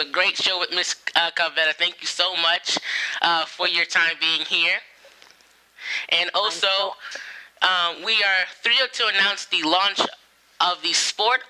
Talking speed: 150 wpm